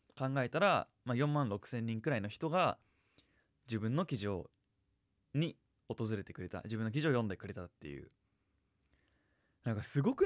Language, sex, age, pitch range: Japanese, male, 20-39, 100-140 Hz